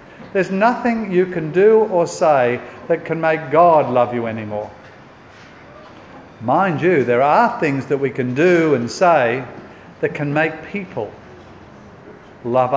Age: 50-69